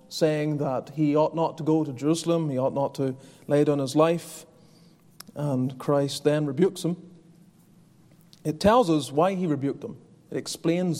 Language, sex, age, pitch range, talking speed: English, male, 30-49, 140-170 Hz, 170 wpm